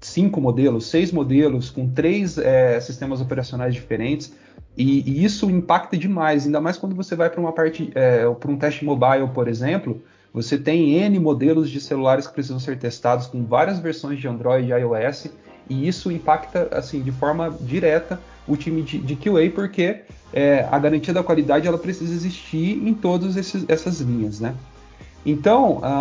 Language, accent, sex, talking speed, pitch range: Portuguese, Brazilian, male, 170 wpm, 130-175 Hz